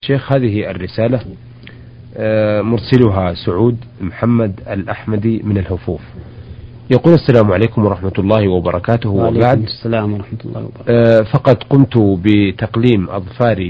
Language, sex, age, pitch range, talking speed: Arabic, male, 40-59, 110-130 Hz, 105 wpm